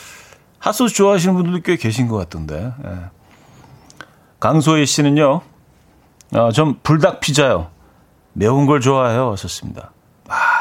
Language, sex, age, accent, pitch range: Korean, male, 40-59, native, 100-160 Hz